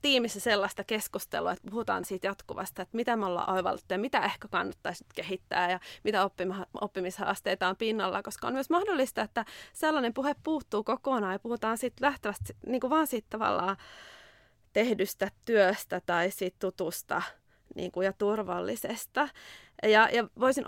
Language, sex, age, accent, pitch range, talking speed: Finnish, female, 30-49, native, 200-265 Hz, 150 wpm